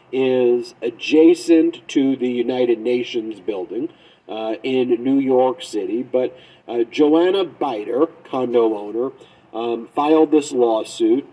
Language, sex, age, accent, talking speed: English, male, 50-69, American, 115 wpm